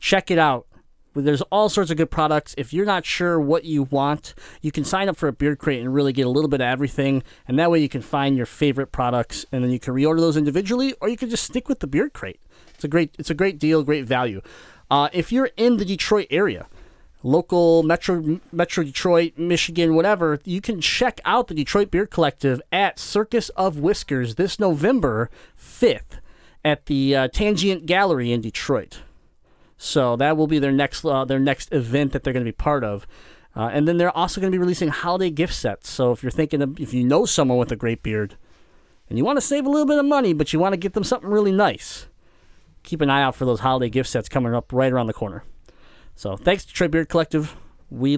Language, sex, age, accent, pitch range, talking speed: English, male, 30-49, American, 135-180 Hz, 230 wpm